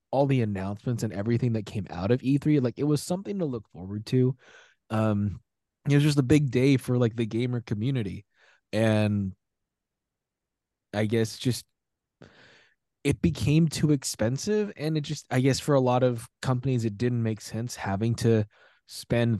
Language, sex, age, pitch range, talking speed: English, male, 20-39, 105-130 Hz, 170 wpm